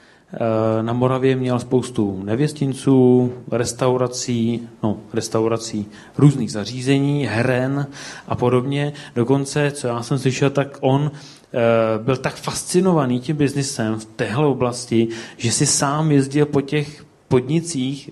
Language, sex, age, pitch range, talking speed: Czech, male, 30-49, 120-145 Hz, 120 wpm